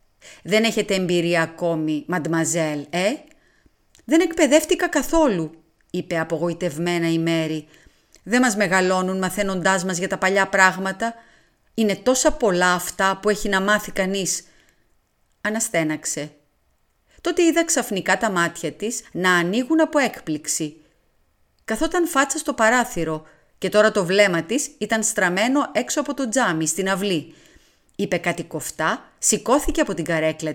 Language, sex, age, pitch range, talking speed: Greek, female, 30-49, 175-265 Hz, 130 wpm